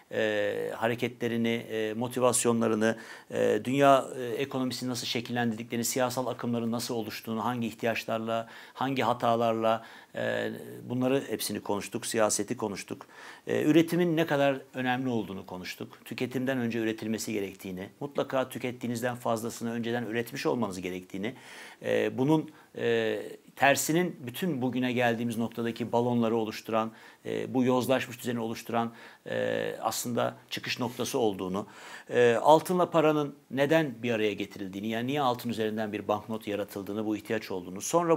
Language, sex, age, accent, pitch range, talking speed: Turkish, male, 60-79, native, 110-130 Hz, 115 wpm